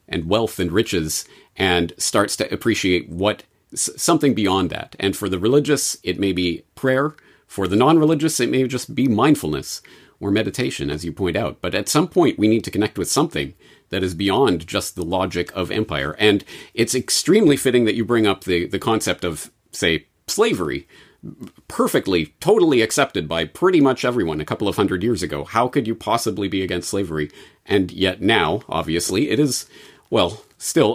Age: 40-59